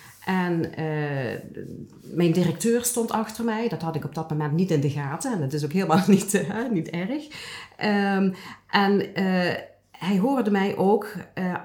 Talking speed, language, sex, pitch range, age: 175 wpm, Dutch, female, 155-205 Hz, 40-59